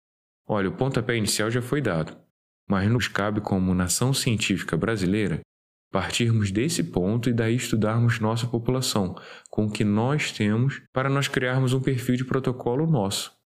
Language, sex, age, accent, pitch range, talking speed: Portuguese, male, 10-29, Brazilian, 95-125 Hz, 155 wpm